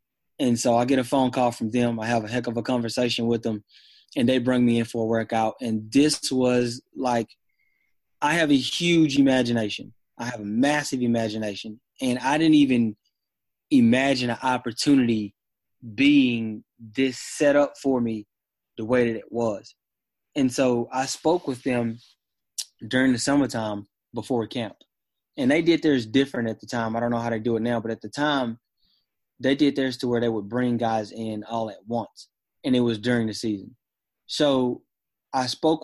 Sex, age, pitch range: male, 20-39, 115-130 Hz